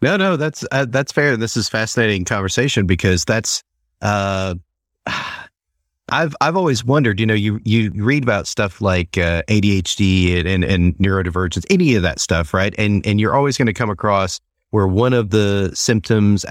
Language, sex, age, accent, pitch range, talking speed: English, male, 40-59, American, 85-105 Hz, 180 wpm